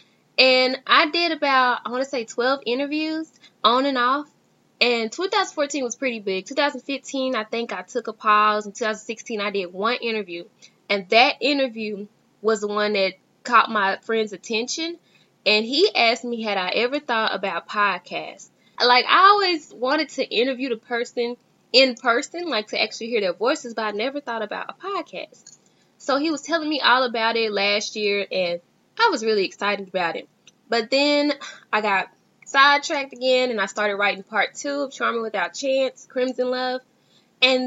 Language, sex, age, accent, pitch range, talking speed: English, female, 10-29, American, 210-275 Hz, 185 wpm